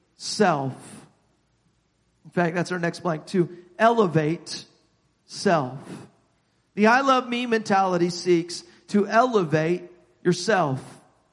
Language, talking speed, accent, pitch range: English, 100 wpm, American, 190-245 Hz